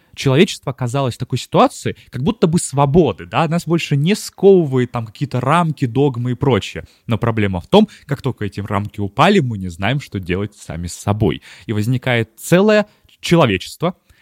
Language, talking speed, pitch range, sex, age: Russian, 175 wpm, 105-140 Hz, male, 20-39